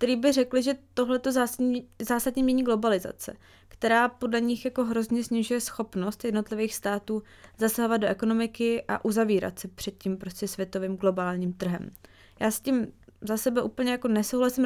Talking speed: 150 wpm